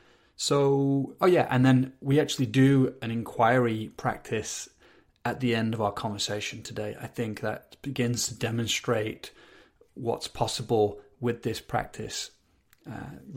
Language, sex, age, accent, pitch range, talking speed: English, male, 30-49, British, 105-125 Hz, 135 wpm